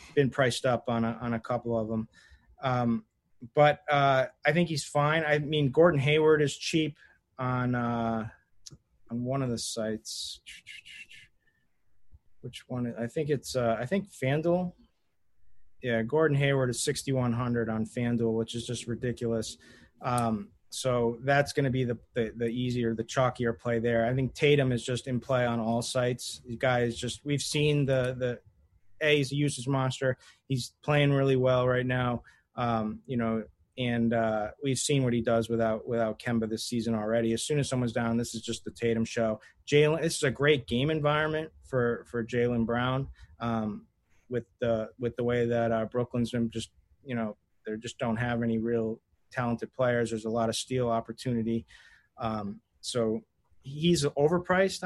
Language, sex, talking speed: English, male, 175 wpm